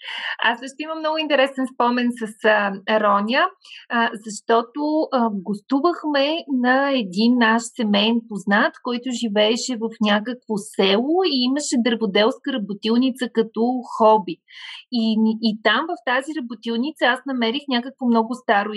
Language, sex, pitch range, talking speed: Bulgarian, female, 200-250 Hz, 130 wpm